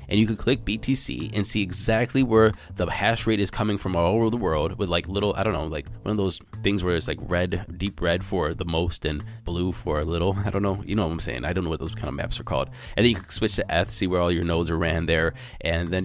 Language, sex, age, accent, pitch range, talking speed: English, male, 20-39, American, 90-110 Hz, 295 wpm